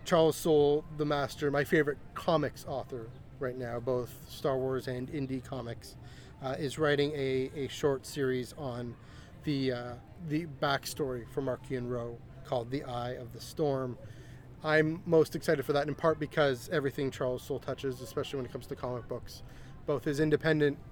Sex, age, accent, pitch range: male, 30-49, American, 125-150 Hz